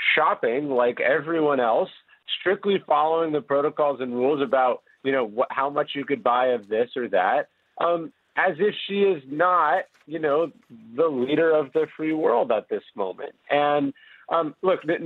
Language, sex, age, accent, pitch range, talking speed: English, male, 40-59, American, 135-170 Hz, 175 wpm